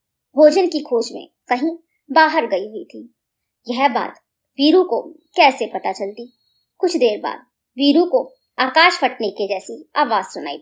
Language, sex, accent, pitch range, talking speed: Hindi, male, native, 235-310 Hz, 155 wpm